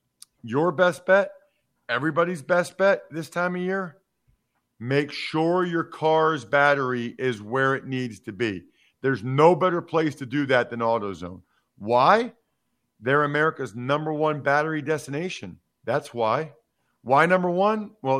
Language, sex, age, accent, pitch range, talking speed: English, male, 50-69, American, 135-190 Hz, 140 wpm